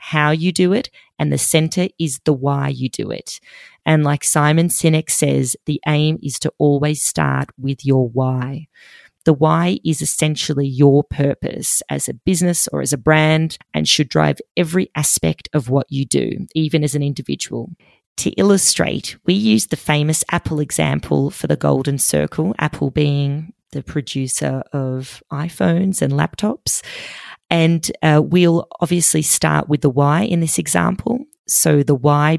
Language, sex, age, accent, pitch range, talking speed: English, female, 30-49, Australian, 135-165 Hz, 160 wpm